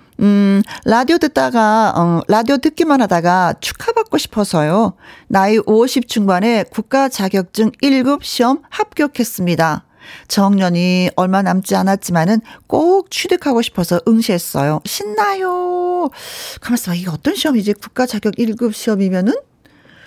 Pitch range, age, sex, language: 185-270 Hz, 40-59, female, Korean